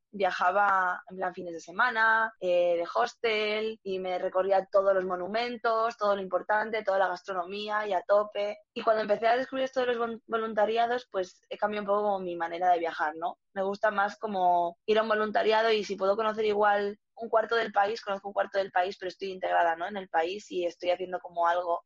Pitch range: 180-210 Hz